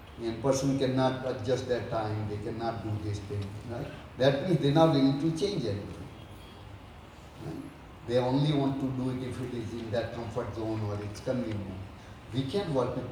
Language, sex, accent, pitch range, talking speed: Tamil, male, native, 110-145 Hz, 190 wpm